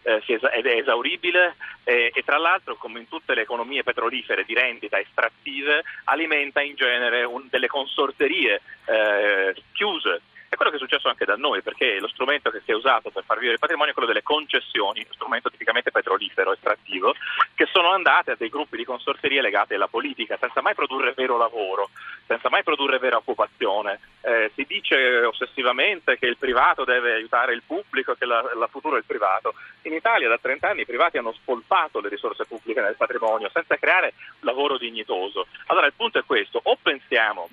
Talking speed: 185 wpm